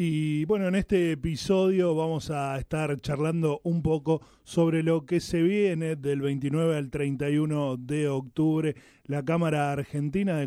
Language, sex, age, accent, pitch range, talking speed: Spanish, male, 20-39, Argentinian, 130-160 Hz, 150 wpm